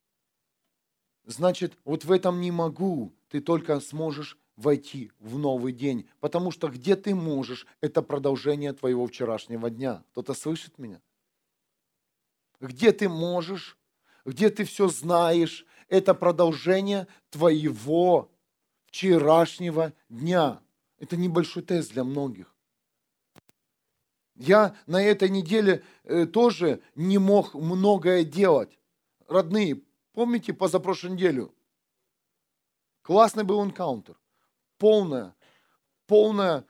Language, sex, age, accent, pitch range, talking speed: Russian, male, 40-59, native, 155-195 Hz, 100 wpm